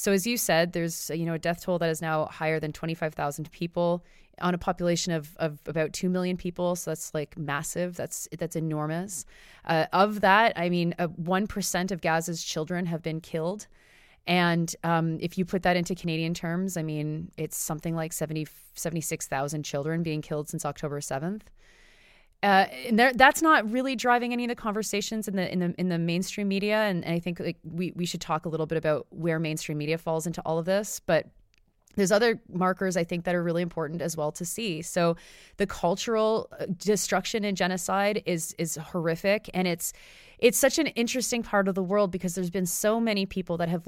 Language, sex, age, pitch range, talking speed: English, female, 30-49, 165-195 Hz, 205 wpm